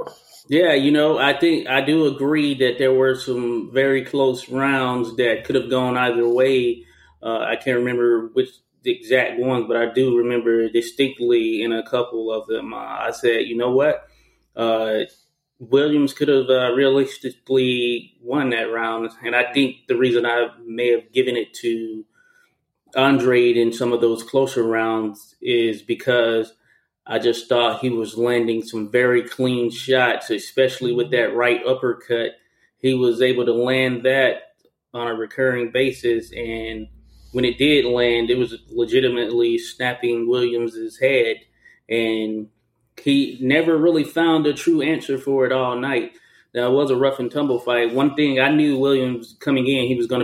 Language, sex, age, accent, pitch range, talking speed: English, male, 30-49, American, 120-140 Hz, 165 wpm